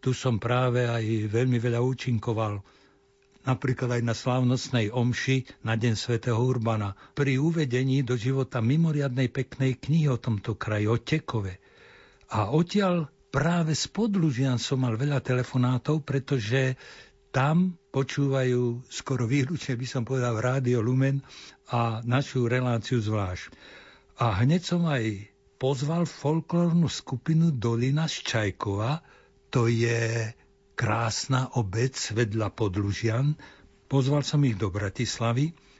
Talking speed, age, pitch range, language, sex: 120 wpm, 60-79, 115-145 Hz, Slovak, male